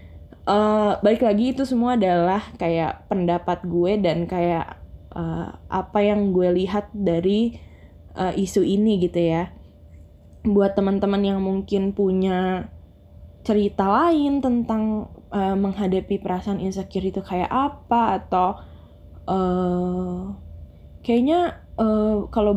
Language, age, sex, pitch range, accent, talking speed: Indonesian, 10-29, female, 175-210 Hz, native, 110 wpm